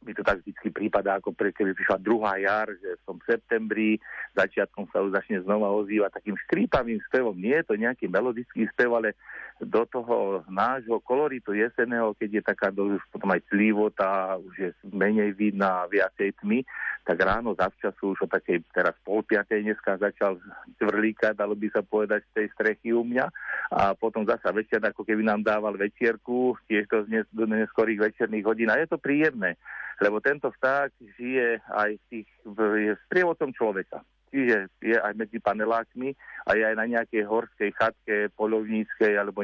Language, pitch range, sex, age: Slovak, 105-115 Hz, male, 40-59